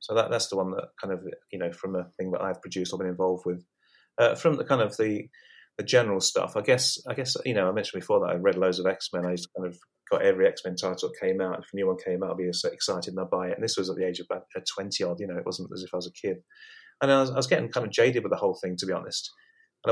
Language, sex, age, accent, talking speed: English, male, 30-49, British, 320 wpm